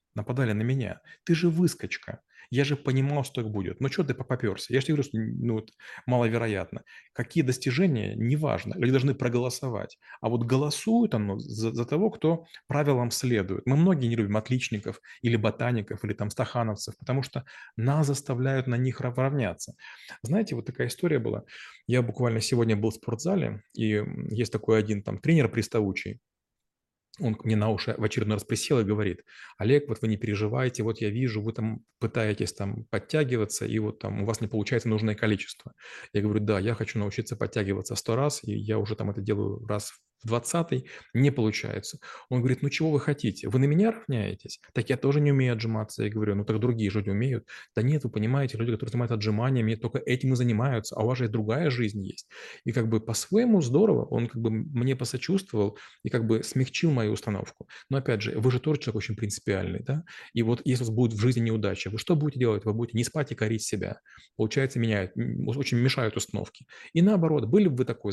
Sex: male